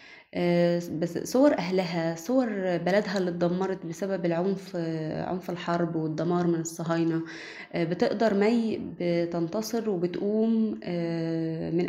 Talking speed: 95 wpm